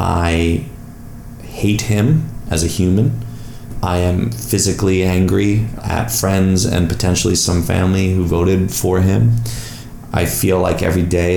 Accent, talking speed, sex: American, 130 wpm, male